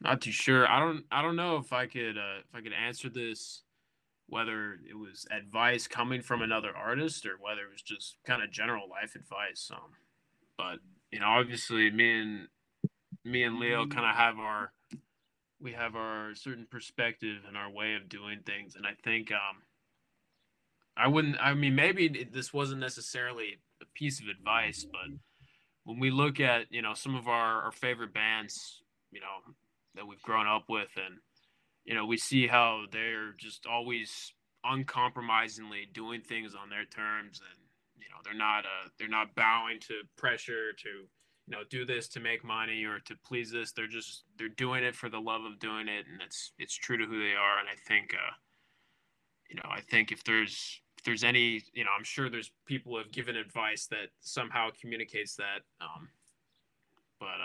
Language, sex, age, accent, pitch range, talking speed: English, male, 20-39, American, 110-125 Hz, 190 wpm